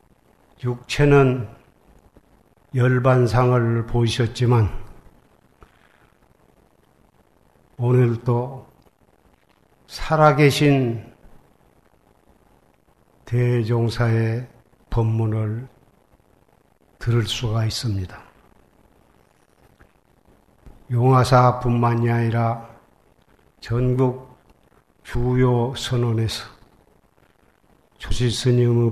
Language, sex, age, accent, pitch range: Korean, male, 50-69, native, 115-130 Hz